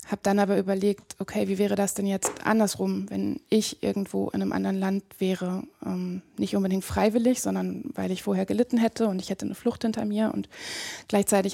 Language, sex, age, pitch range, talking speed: German, female, 20-39, 190-215 Hz, 200 wpm